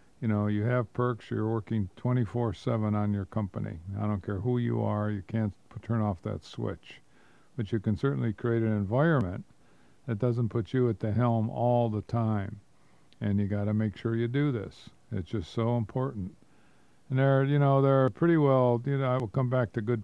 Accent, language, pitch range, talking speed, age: American, English, 105-130 Hz, 205 wpm, 50-69